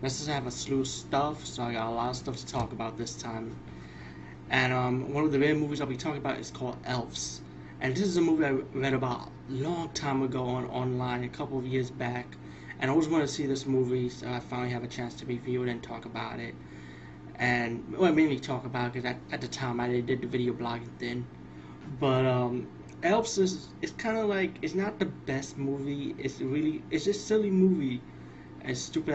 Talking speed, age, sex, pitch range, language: 230 wpm, 20-39, male, 115-140 Hz, English